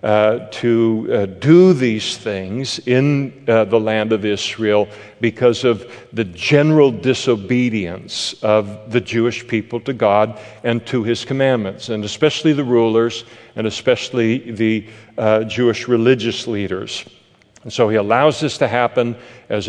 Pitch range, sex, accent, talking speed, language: 110-130 Hz, male, American, 140 wpm, English